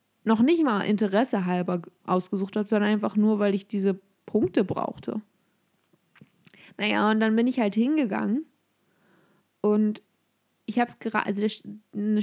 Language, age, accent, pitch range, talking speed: German, 20-39, German, 200-235 Hz, 140 wpm